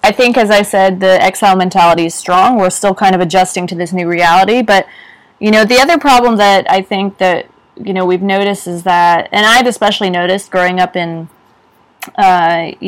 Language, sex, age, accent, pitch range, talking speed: English, female, 20-39, American, 180-225 Hz, 200 wpm